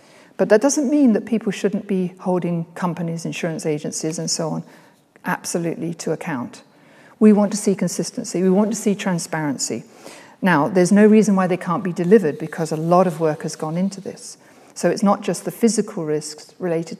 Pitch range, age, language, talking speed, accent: 165-205 Hz, 50-69, English, 190 wpm, British